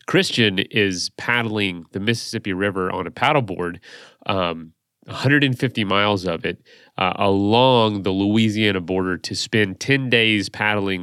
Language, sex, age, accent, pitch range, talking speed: English, male, 30-49, American, 95-120 Hz, 130 wpm